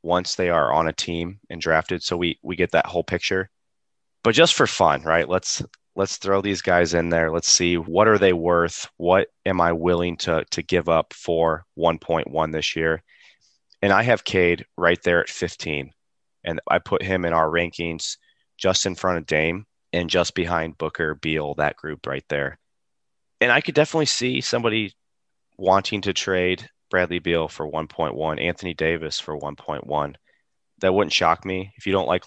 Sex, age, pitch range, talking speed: male, 30-49, 80-95 Hz, 185 wpm